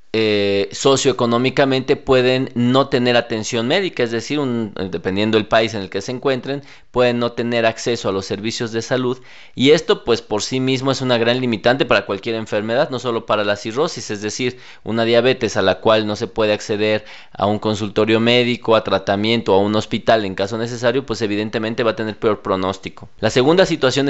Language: Spanish